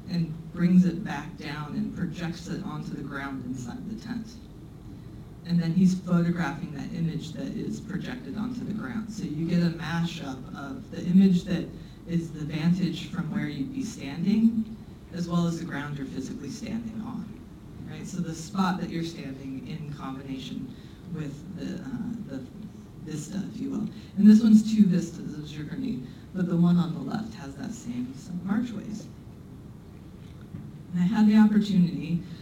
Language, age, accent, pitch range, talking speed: English, 40-59, American, 160-205 Hz, 170 wpm